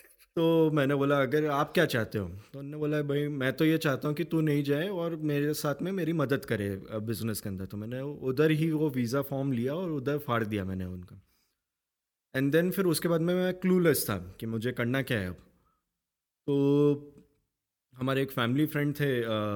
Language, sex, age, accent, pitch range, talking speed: Hindi, male, 20-39, native, 120-155 Hz, 200 wpm